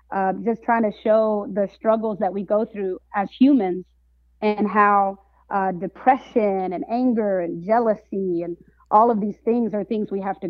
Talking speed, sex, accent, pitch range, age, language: 175 wpm, female, American, 190-220 Hz, 30-49, English